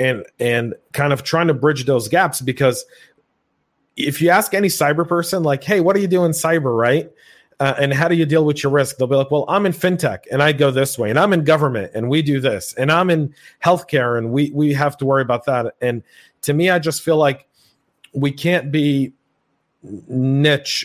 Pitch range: 125-155 Hz